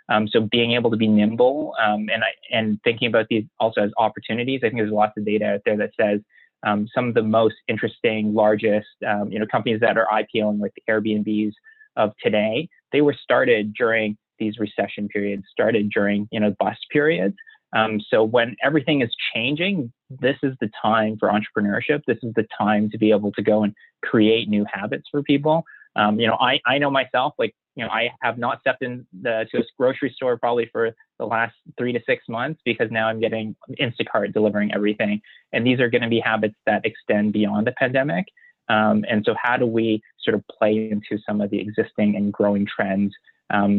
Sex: male